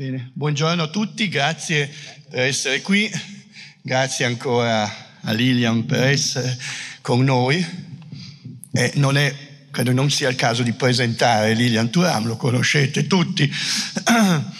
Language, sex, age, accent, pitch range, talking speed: Italian, male, 50-69, native, 120-155 Hz, 130 wpm